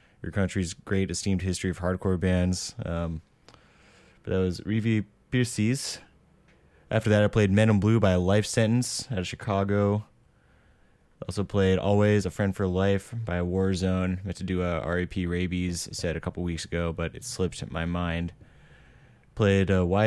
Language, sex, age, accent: English, male, 20-39, American